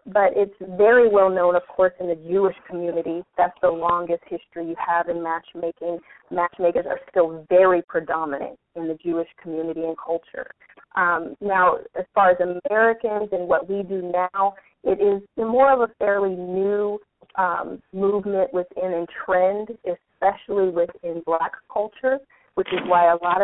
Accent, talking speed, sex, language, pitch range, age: American, 155 wpm, female, English, 175-205 Hz, 30-49